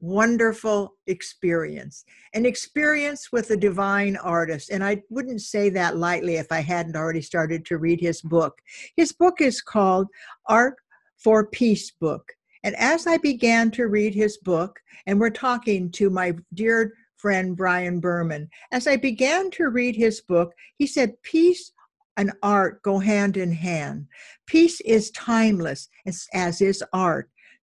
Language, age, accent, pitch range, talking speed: English, 60-79, American, 185-245 Hz, 155 wpm